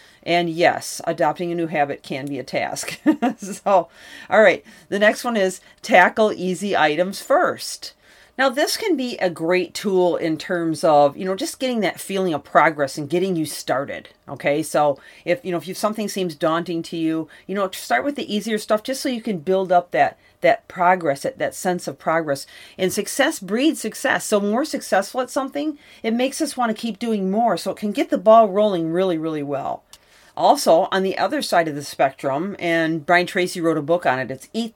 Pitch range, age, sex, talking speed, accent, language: 165-210 Hz, 40-59, female, 210 wpm, American, English